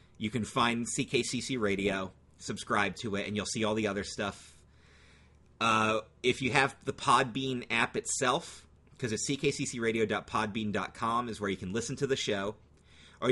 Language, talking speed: English, 160 wpm